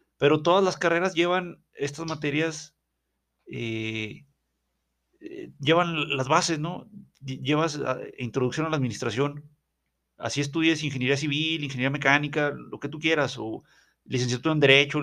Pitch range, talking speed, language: 125-155 Hz, 130 wpm, Spanish